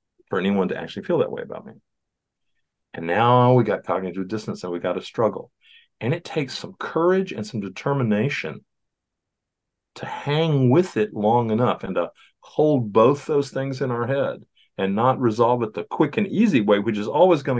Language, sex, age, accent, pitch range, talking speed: English, male, 50-69, American, 100-135 Hz, 190 wpm